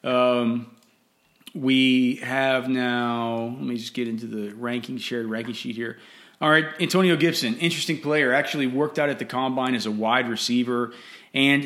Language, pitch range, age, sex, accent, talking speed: English, 115-140 Hz, 30-49, male, American, 165 wpm